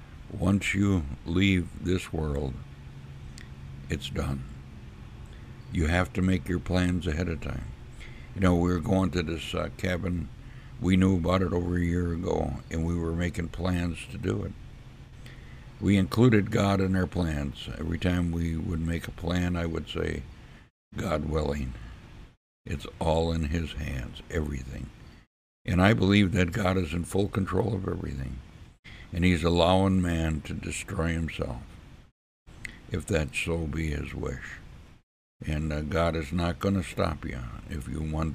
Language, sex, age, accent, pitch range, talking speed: English, male, 60-79, American, 75-95 Hz, 160 wpm